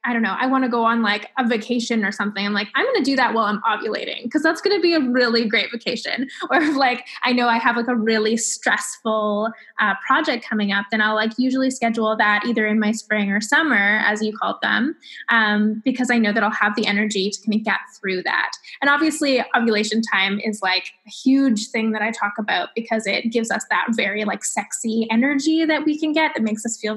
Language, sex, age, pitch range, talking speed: English, female, 10-29, 220-265 Hz, 235 wpm